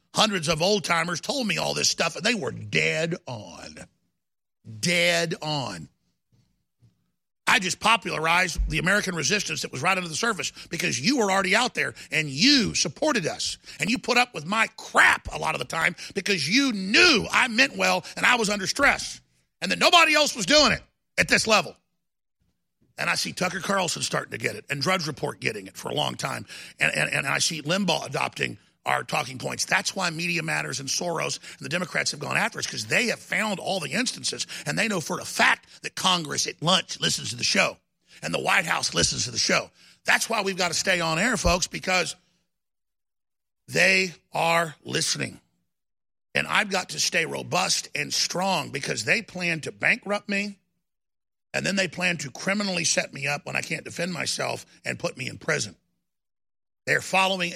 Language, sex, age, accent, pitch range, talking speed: English, male, 50-69, American, 160-205 Hz, 195 wpm